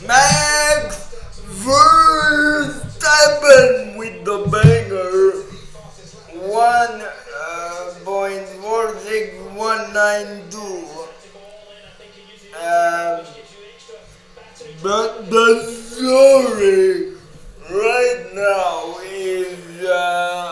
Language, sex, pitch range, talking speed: English, male, 185-240 Hz, 40 wpm